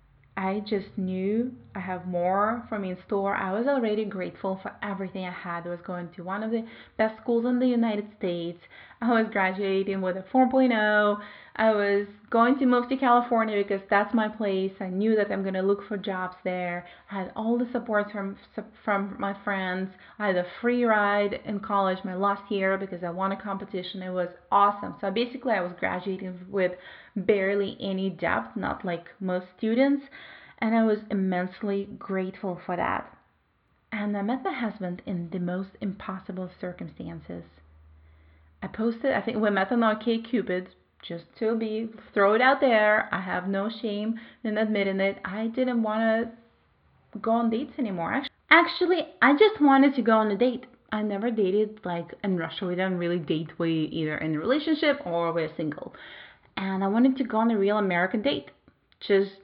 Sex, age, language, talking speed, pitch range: female, 30-49, English, 185 wpm, 185-225 Hz